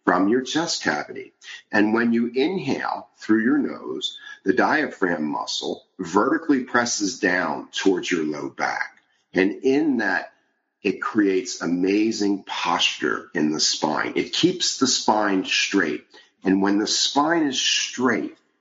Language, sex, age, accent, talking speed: English, male, 50-69, American, 135 wpm